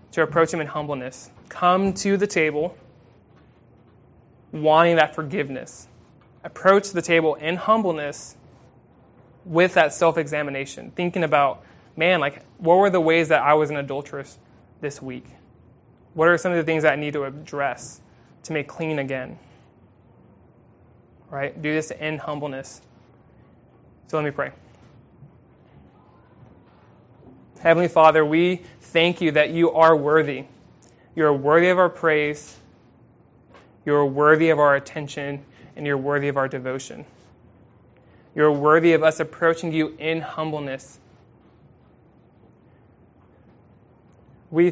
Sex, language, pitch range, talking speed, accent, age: male, English, 130-165 Hz, 125 wpm, American, 20-39